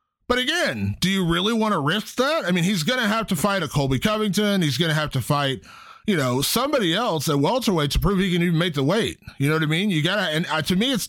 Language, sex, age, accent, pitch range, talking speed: English, male, 30-49, American, 145-195 Hz, 280 wpm